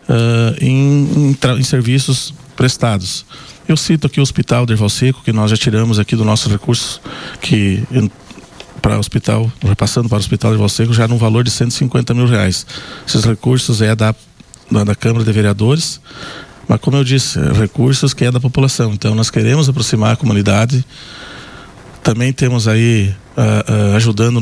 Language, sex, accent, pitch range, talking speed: Portuguese, male, Brazilian, 110-125 Hz, 170 wpm